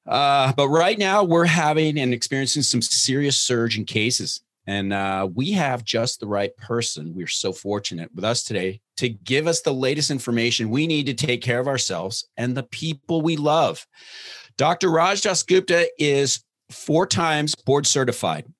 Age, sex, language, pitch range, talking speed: 40-59, male, English, 115-155 Hz, 170 wpm